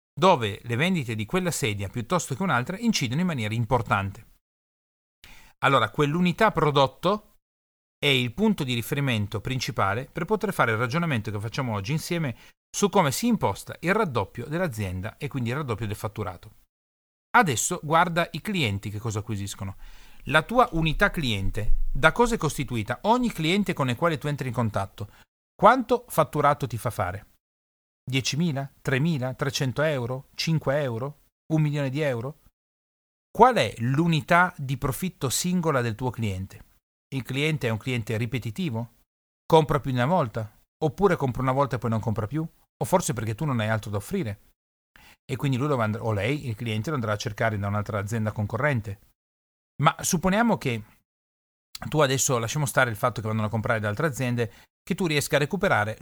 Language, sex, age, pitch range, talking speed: Italian, male, 40-59, 110-155 Hz, 170 wpm